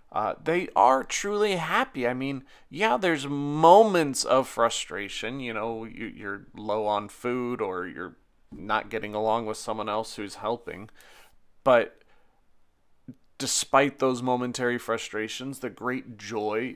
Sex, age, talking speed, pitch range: male, 30-49, 130 wpm, 105-130 Hz